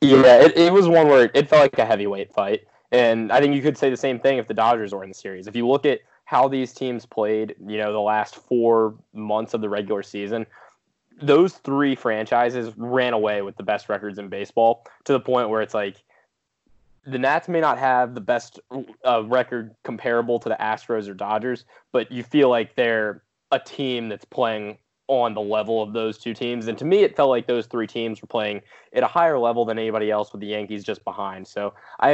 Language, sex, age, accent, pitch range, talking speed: English, male, 20-39, American, 105-125 Hz, 220 wpm